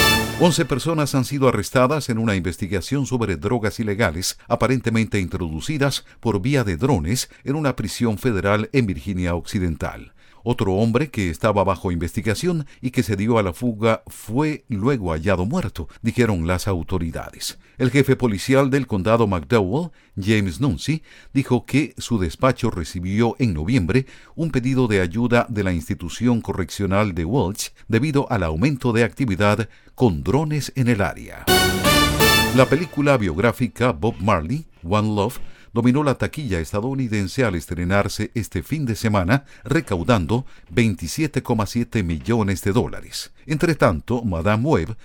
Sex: male